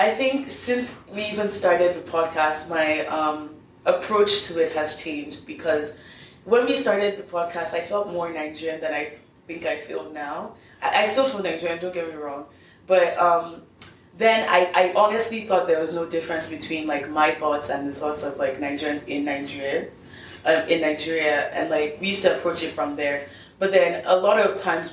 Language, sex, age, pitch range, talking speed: Swahili, female, 20-39, 150-185 Hz, 195 wpm